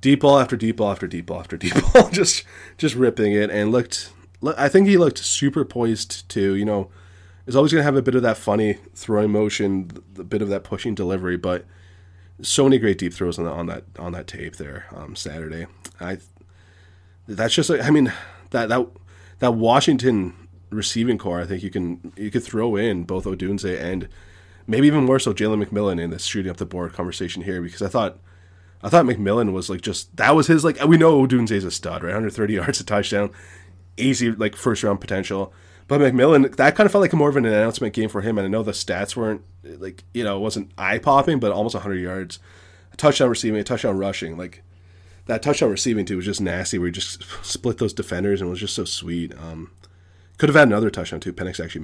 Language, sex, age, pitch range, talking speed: English, male, 20-39, 90-115 Hz, 220 wpm